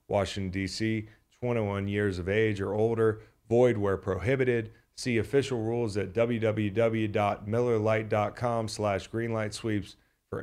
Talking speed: 110 wpm